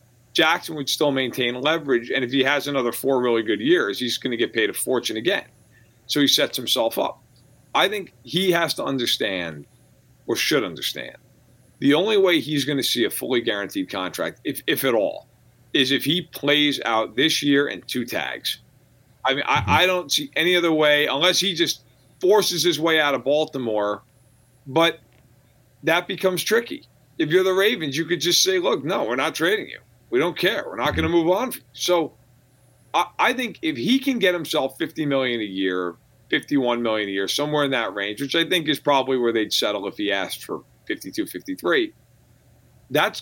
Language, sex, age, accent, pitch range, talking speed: English, male, 40-59, American, 125-175 Hz, 195 wpm